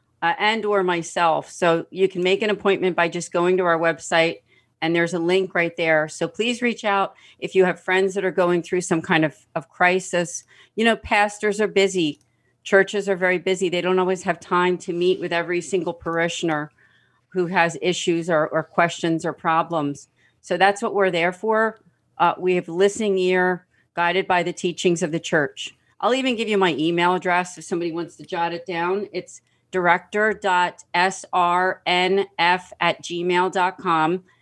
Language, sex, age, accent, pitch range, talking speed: English, female, 40-59, American, 165-190 Hz, 180 wpm